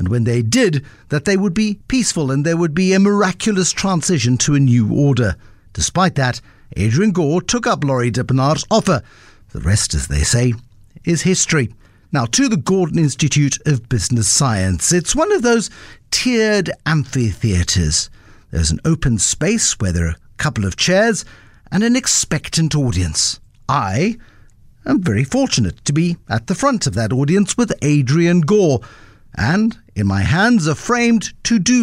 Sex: male